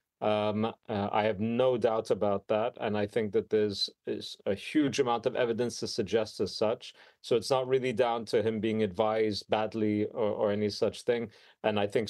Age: 40-59